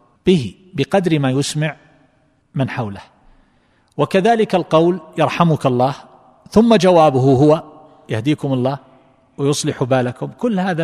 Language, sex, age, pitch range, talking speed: Arabic, male, 40-59, 125-155 Hz, 105 wpm